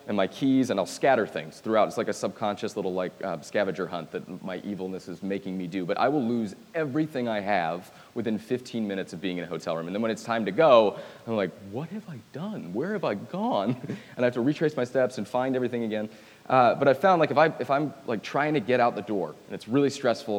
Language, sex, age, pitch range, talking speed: English, male, 30-49, 105-140 Hz, 260 wpm